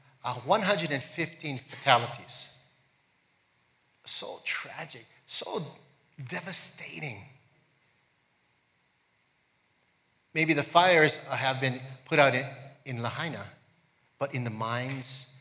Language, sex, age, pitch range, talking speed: English, male, 50-69, 115-140 Hz, 85 wpm